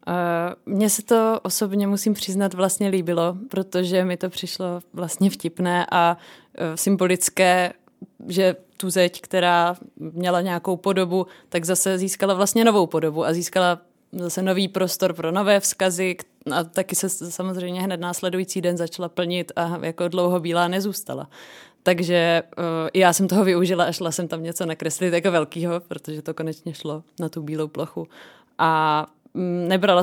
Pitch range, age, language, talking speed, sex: 165-185 Hz, 20-39, Czech, 150 wpm, female